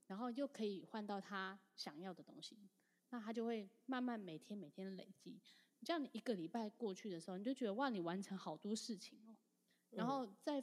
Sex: female